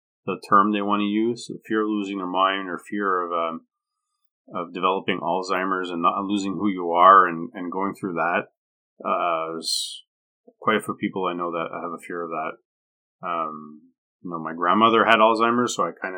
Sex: male